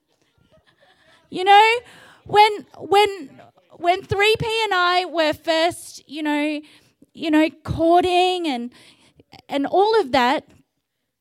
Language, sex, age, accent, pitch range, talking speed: English, female, 20-39, Australian, 220-325 Hz, 110 wpm